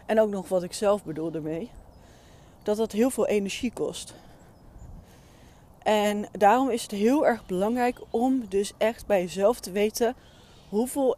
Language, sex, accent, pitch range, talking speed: Dutch, female, Dutch, 180-220 Hz, 155 wpm